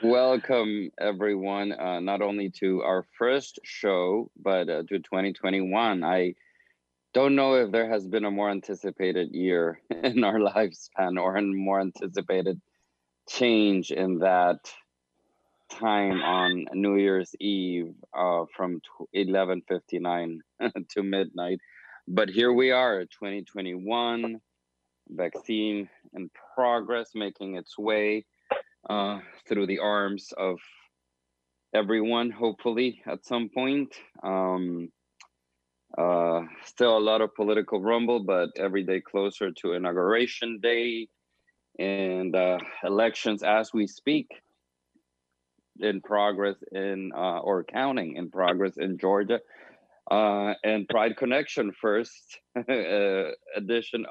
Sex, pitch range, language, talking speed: male, 90-110 Hz, English, 115 wpm